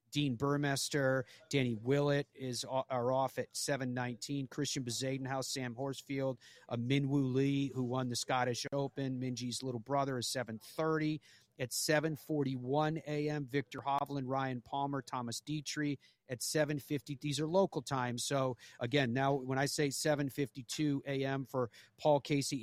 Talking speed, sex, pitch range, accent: 135 wpm, male, 125-145 Hz, American